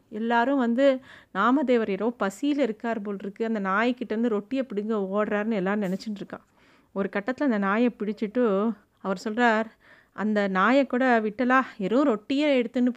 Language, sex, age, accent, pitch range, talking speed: Tamil, female, 30-49, native, 215-255 Hz, 150 wpm